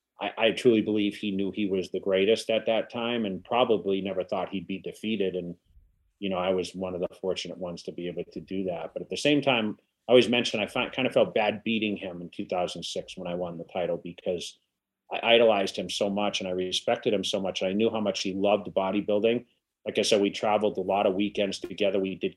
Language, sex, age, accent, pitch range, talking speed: English, male, 30-49, American, 95-120 Hz, 235 wpm